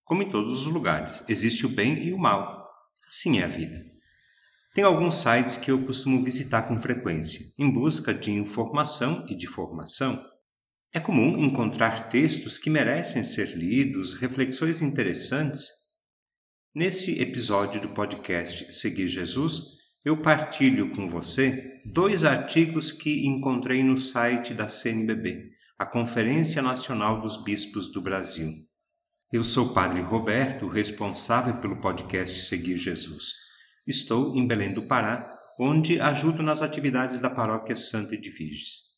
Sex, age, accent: male, 50-69, Brazilian